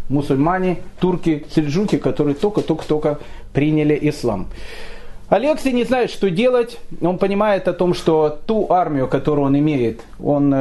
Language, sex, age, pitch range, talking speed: Russian, male, 30-49, 140-210 Hz, 130 wpm